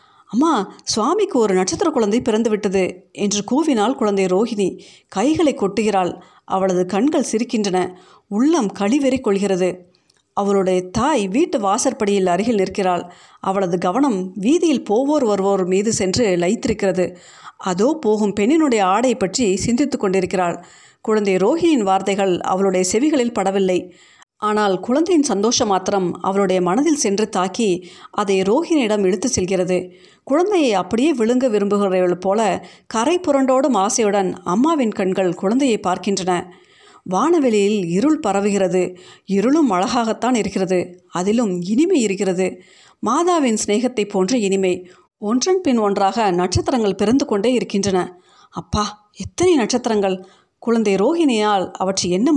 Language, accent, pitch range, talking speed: Tamil, native, 190-250 Hz, 110 wpm